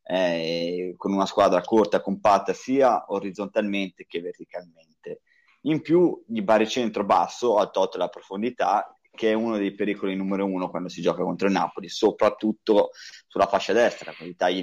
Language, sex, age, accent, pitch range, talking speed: Italian, male, 30-49, native, 95-135 Hz, 160 wpm